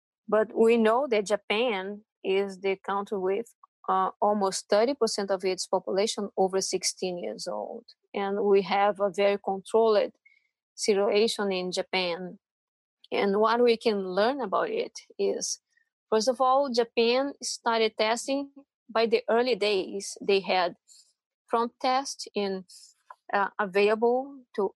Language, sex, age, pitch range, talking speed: English, female, 20-39, 195-230 Hz, 130 wpm